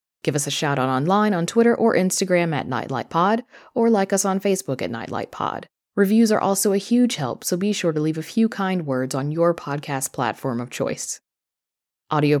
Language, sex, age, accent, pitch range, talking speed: English, female, 30-49, American, 140-185 Hz, 200 wpm